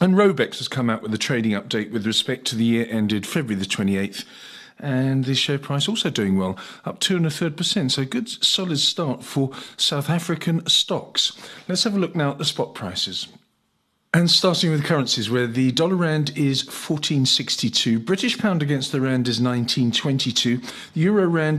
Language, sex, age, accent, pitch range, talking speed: English, male, 40-59, British, 115-160 Hz, 190 wpm